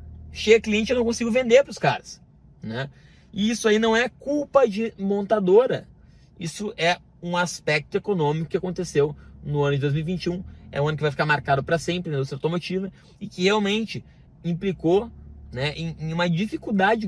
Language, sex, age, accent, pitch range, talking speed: Portuguese, male, 20-39, Brazilian, 165-215 Hz, 170 wpm